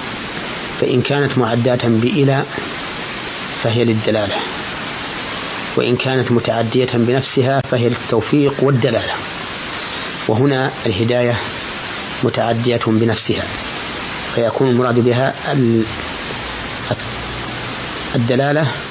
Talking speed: 65 wpm